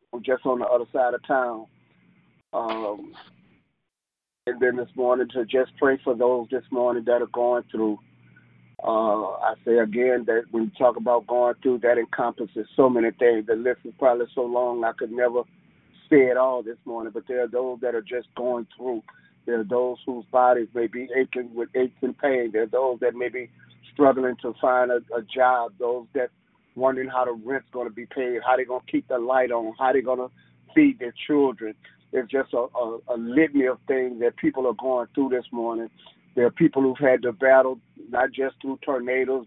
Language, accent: English, American